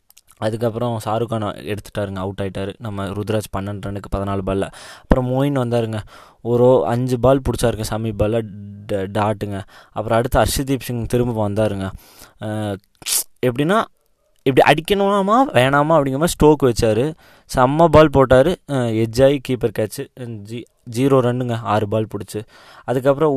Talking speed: 125 wpm